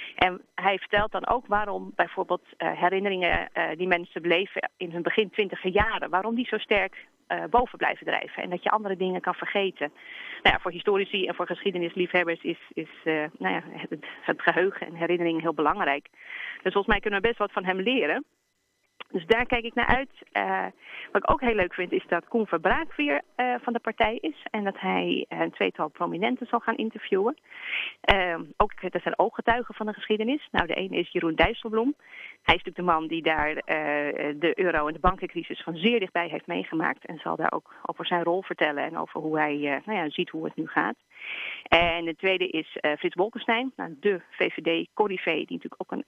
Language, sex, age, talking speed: Dutch, female, 30-49, 205 wpm